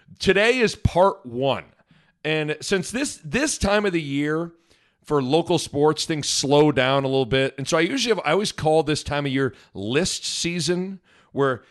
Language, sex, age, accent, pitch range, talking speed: English, male, 40-59, American, 120-155 Hz, 185 wpm